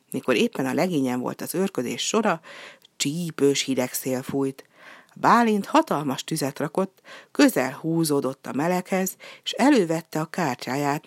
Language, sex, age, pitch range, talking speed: Hungarian, female, 60-79, 145-200 Hz, 130 wpm